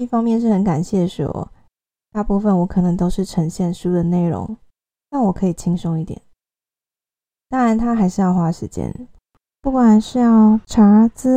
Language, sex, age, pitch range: Chinese, female, 20-39, 175-220 Hz